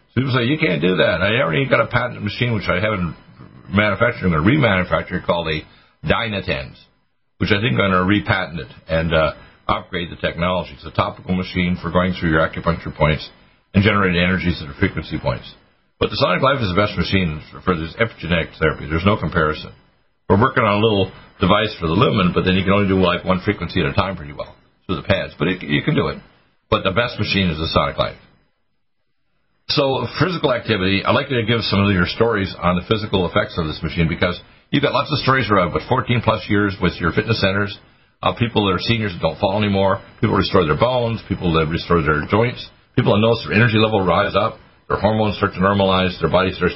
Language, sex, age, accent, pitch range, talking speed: English, male, 60-79, American, 90-110 Hz, 225 wpm